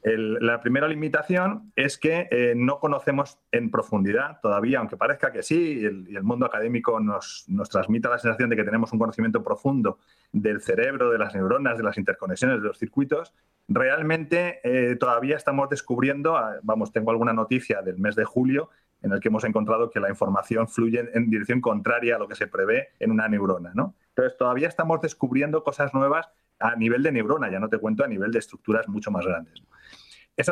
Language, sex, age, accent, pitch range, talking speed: Spanish, male, 30-49, Spanish, 115-160 Hz, 195 wpm